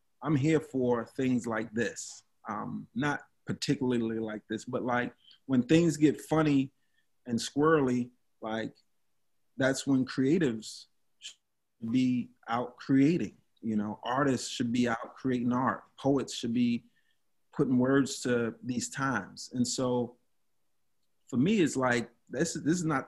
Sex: male